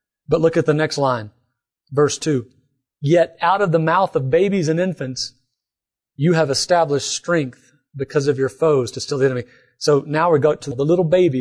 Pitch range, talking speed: 130-165 Hz, 195 wpm